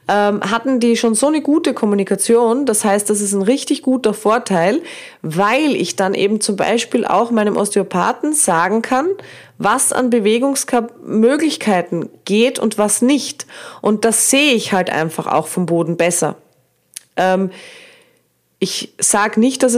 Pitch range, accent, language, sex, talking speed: 185-240 Hz, German, German, female, 145 wpm